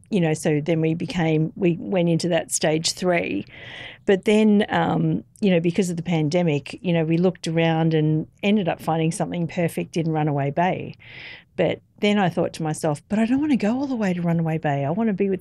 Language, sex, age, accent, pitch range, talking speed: English, female, 50-69, Australian, 155-180 Hz, 225 wpm